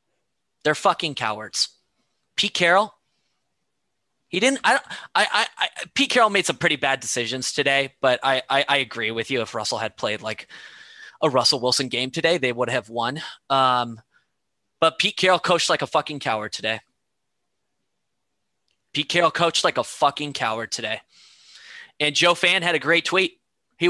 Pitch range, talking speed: 130-175 Hz, 170 wpm